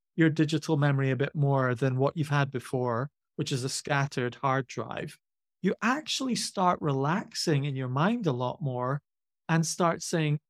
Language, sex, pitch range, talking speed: English, male, 130-170 Hz, 170 wpm